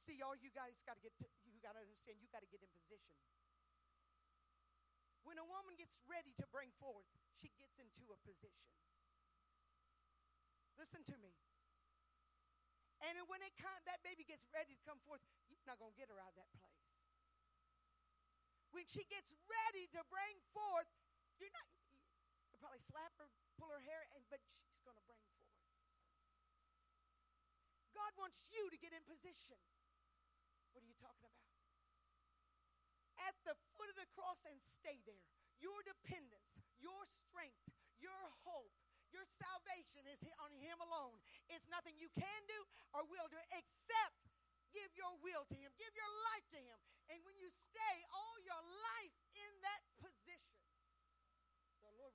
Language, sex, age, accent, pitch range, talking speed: English, female, 40-59, American, 280-425 Hz, 160 wpm